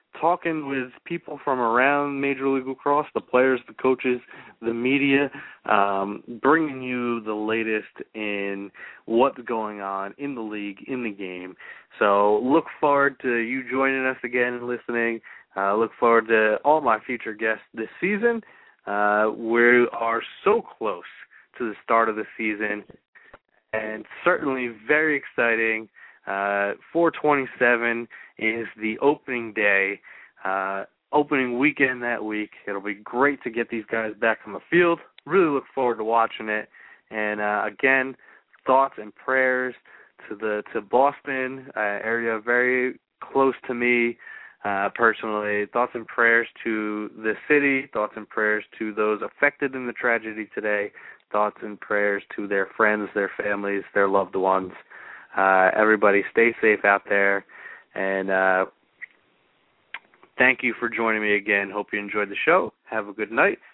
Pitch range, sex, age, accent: 105-130 Hz, male, 20-39, American